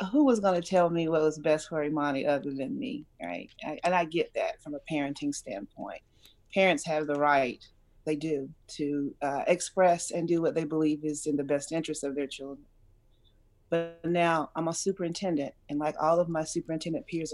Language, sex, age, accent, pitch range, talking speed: English, female, 30-49, American, 145-165 Hz, 195 wpm